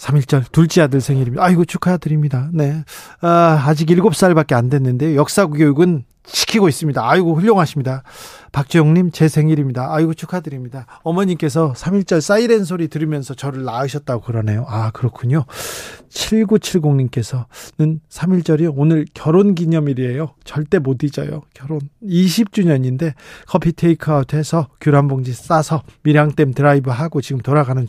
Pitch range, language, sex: 135-175 Hz, Korean, male